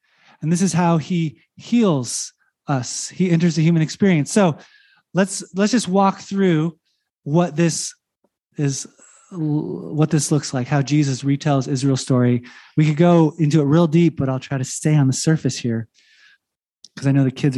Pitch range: 135-175 Hz